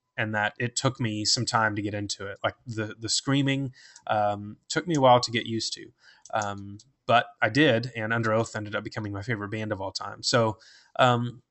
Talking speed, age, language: 220 wpm, 20-39, English